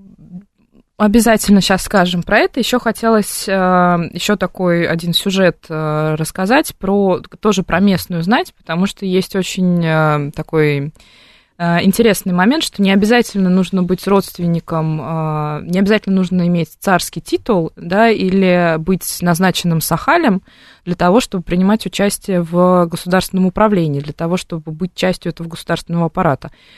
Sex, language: female, Russian